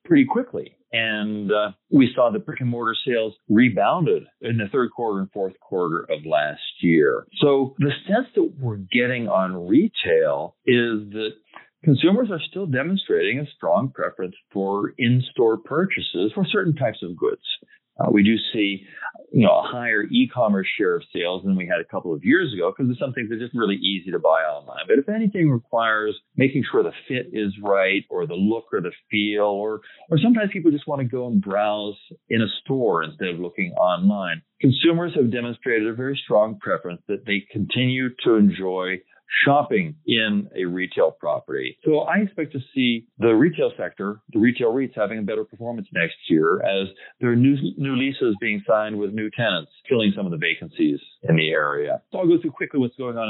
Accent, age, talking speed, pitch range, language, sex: American, 40-59, 195 wpm, 105-170 Hz, English, male